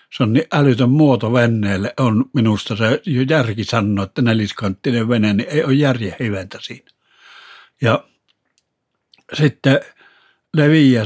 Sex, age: male, 60-79